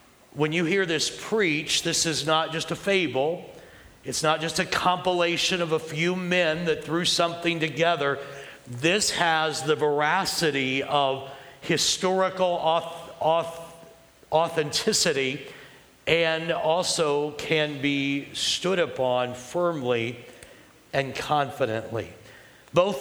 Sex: male